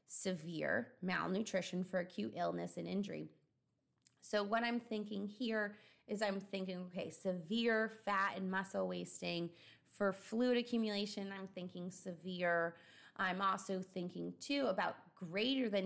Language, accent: English, American